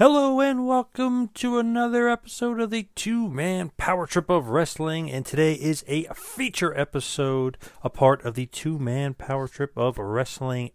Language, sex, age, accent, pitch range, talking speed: English, male, 40-59, American, 100-140 Hz, 165 wpm